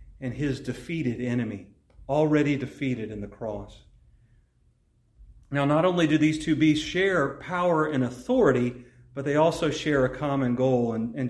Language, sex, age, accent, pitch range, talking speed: English, male, 40-59, American, 125-150 Hz, 155 wpm